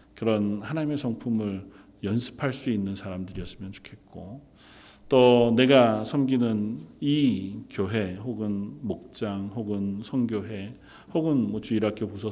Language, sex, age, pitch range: Korean, male, 40-59, 100-125 Hz